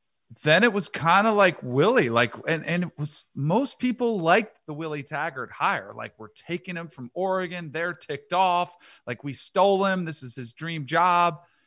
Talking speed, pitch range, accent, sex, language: 190 wpm, 125-170 Hz, American, male, English